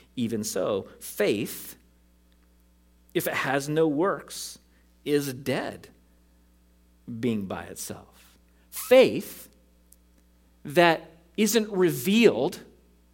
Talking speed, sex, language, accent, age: 80 wpm, male, English, American, 40-59